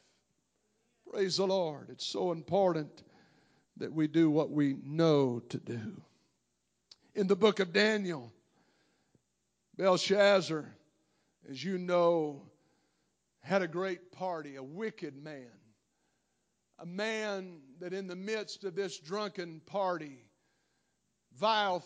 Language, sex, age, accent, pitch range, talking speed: English, male, 50-69, American, 165-205 Hz, 115 wpm